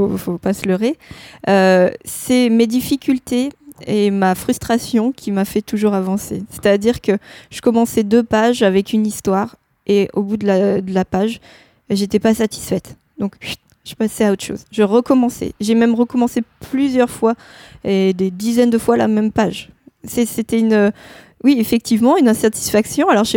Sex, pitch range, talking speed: female, 195-235 Hz, 175 wpm